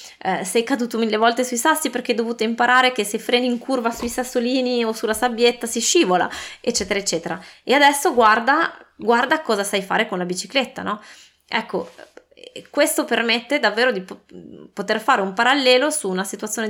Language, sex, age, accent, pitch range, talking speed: Italian, female, 20-39, native, 180-235 Hz, 170 wpm